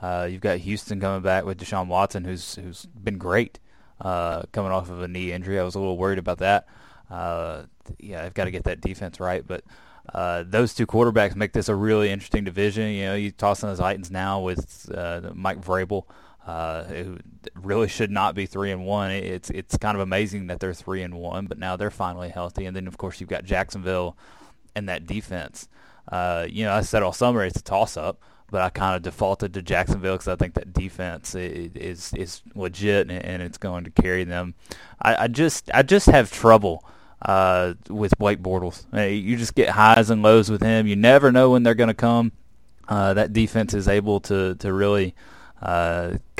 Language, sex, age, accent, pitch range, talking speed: English, male, 20-39, American, 90-105 Hz, 210 wpm